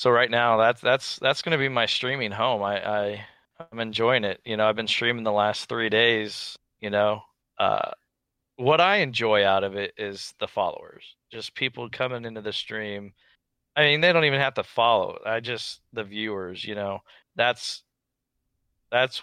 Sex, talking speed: male, 185 wpm